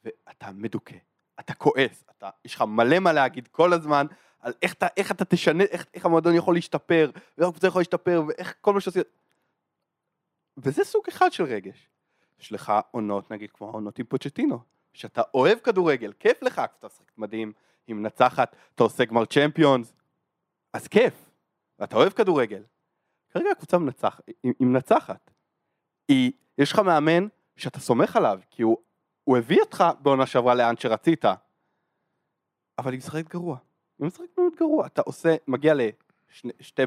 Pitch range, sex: 125-185 Hz, male